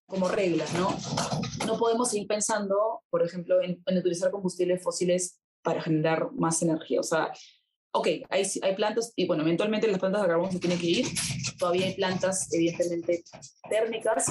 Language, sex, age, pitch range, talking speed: Spanish, female, 20-39, 175-210 Hz, 170 wpm